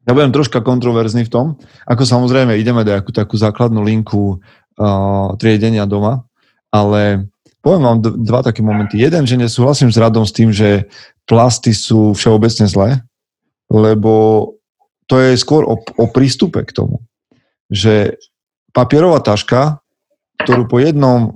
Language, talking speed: Slovak, 140 wpm